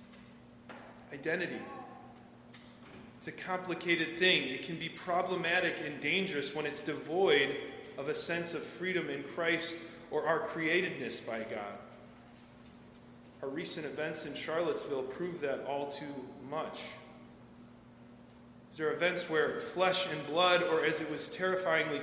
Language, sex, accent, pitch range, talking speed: English, male, American, 150-200 Hz, 130 wpm